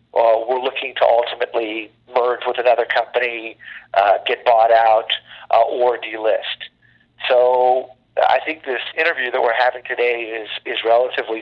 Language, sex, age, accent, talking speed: English, male, 50-69, American, 145 wpm